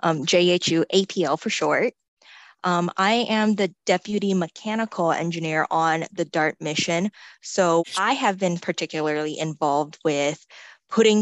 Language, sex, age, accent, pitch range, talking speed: English, female, 20-39, American, 165-200 Hz, 130 wpm